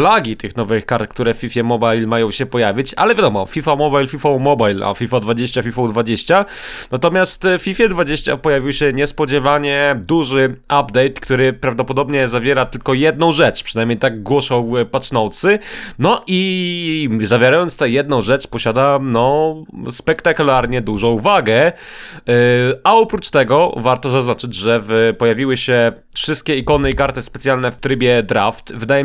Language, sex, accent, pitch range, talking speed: Polish, male, native, 120-150 Hz, 145 wpm